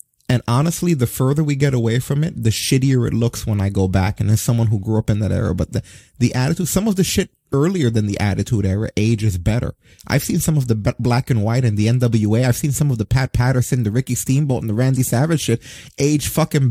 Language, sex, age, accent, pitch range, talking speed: English, male, 30-49, American, 105-135 Hz, 250 wpm